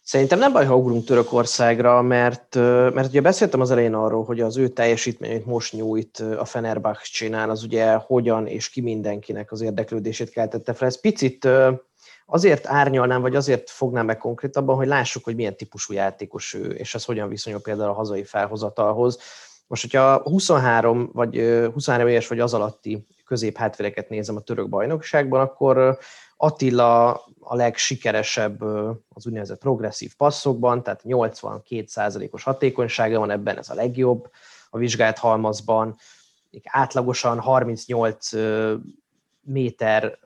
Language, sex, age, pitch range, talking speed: Hungarian, male, 30-49, 110-125 Hz, 140 wpm